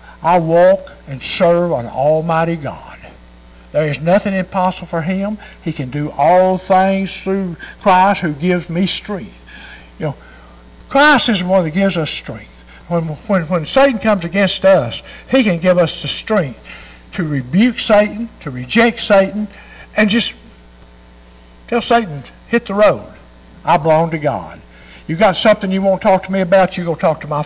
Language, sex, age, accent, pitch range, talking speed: English, male, 60-79, American, 120-200 Hz, 175 wpm